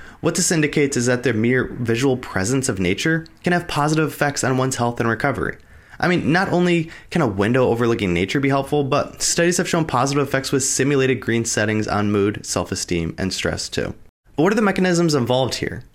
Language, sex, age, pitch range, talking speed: English, male, 20-39, 110-150 Hz, 205 wpm